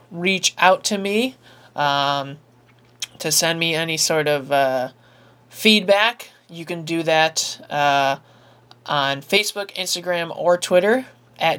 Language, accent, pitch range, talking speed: English, American, 145-190 Hz, 125 wpm